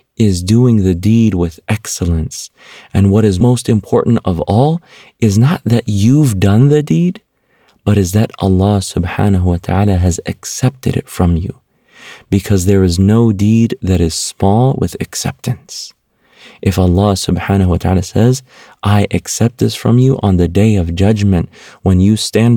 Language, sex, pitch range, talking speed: English, male, 90-110 Hz, 160 wpm